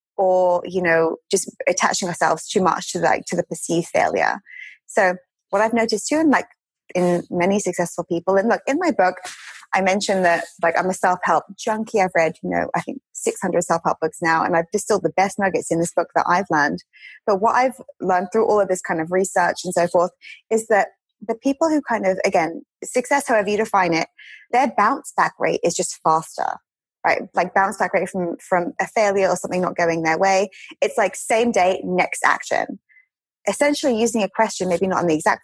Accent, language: British, English